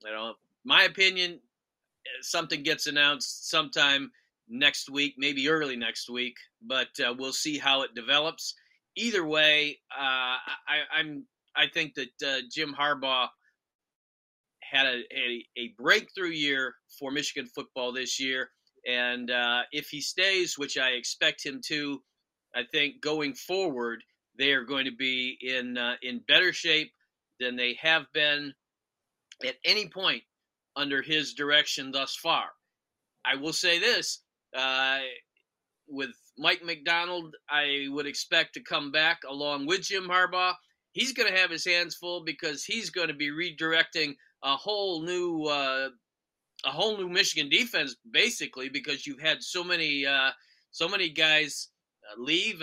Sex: male